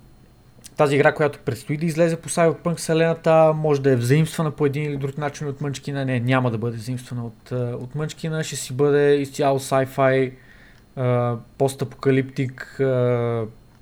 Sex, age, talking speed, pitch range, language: male, 20-39, 150 wpm, 125-145 Hz, Bulgarian